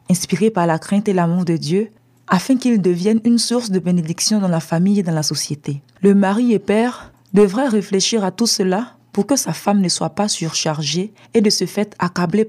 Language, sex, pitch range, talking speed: French, female, 165-205 Hz, 210 wpm